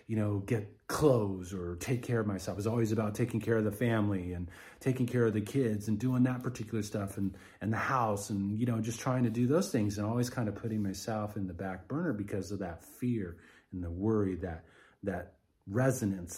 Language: English